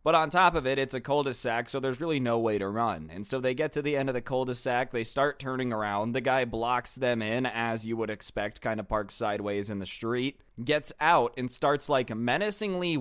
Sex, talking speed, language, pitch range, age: male, 235 wpm, English, 115-150 Hz, 20-39